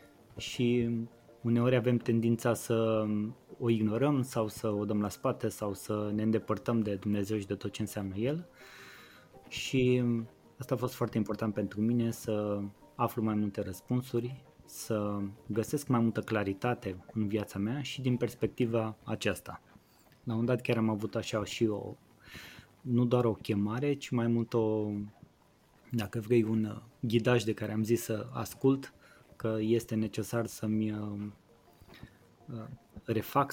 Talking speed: 145 wpm